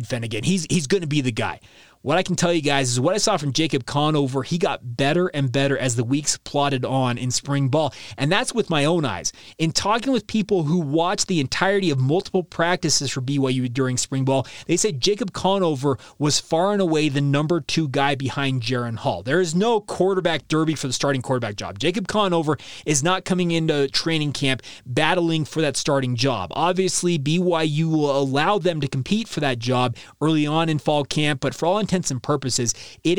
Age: 30-49